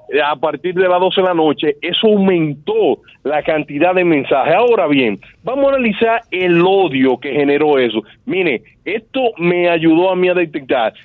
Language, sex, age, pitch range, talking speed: Spanish, male, 40-59, 165-210 Hz, 175 wpm